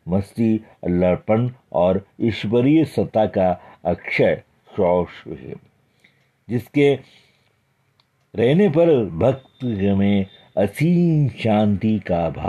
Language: Hindi